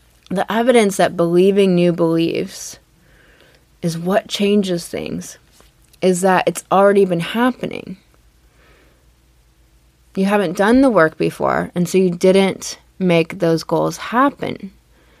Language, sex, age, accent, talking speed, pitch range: English, female, 20-39, American, 120 wpm, 160-200 Hz